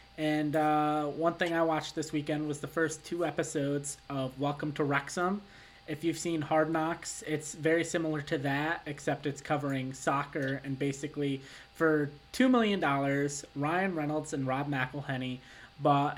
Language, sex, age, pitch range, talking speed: English, male, 20-39, 130-150 Hz, 155 wpm